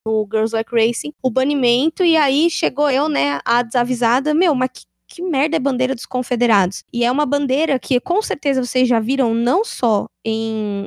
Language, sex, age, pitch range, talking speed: Portuguese, female, 10-29, 230-290 Hz, 195 wpm